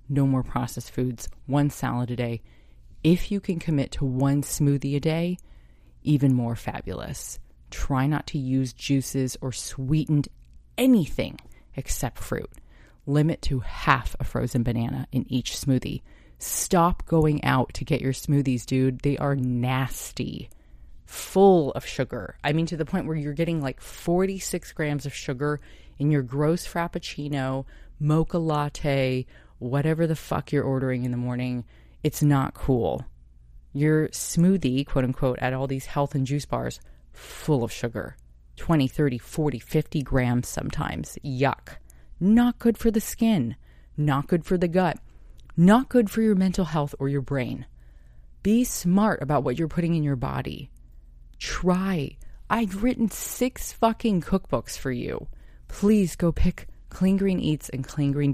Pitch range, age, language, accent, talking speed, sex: 125-165 Hz, 30-49, English, American, 155 wpm, female